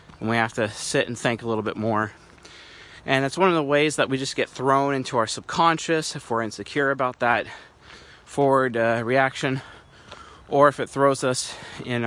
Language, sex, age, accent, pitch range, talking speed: English, male, 30-49, American, 115-140 Hz, 195 wpm